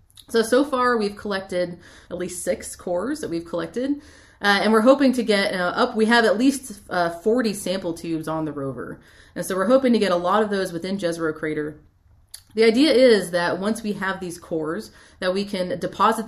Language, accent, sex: English, American, female